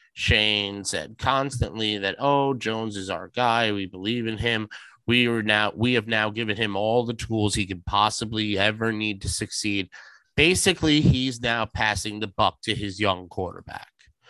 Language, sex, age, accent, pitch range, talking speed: English, male, 30-49, American, 105-120 Hz, 170 wpm